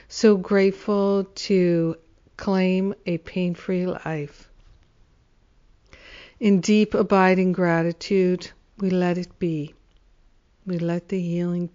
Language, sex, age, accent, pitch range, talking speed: English, female, 60-79, American, 170-200 Hz, 95 wpm